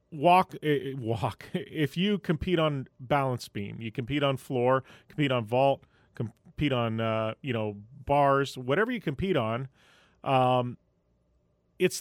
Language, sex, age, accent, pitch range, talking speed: English, male, 30-49, American, 125-175 Hz, 135 wpm